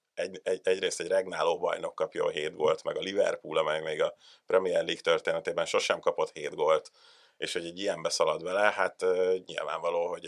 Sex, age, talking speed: male, 30-49, 180 wpm